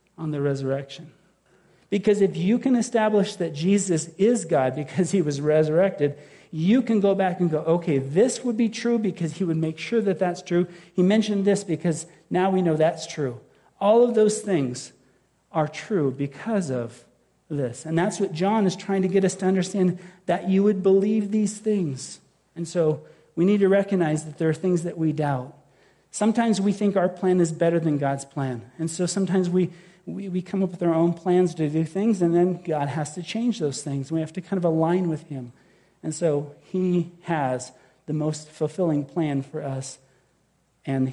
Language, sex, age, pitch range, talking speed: English, male, 40-59, 155-190 Hz, 195 wpm